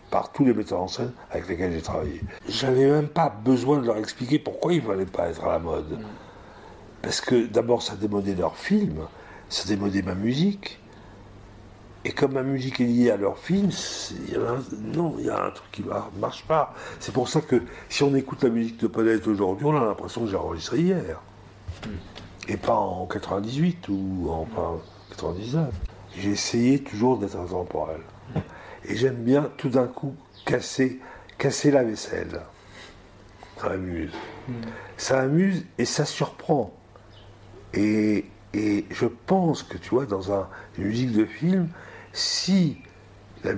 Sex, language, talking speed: male, French, 170 wpm